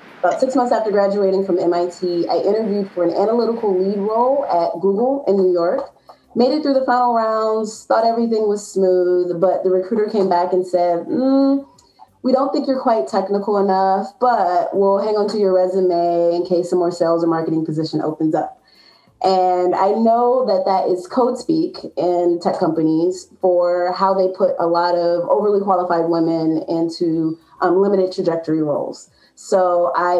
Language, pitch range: English, 175-200 Hz